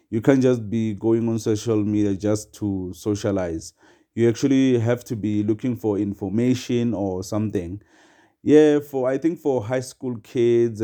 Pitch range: 105-125 Hz